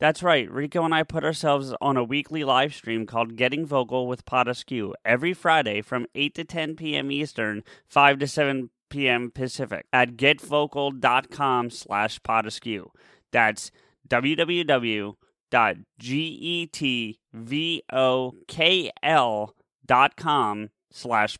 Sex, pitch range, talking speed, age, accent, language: male, 125-155 Hz, 100 wpm, 30-49, American, English